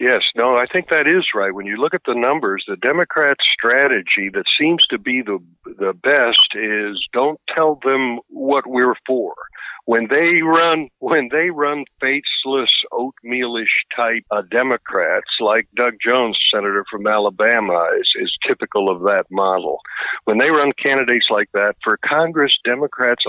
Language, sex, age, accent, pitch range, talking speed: English, male, 60-79, American, 105-140 Hz, 160 wpm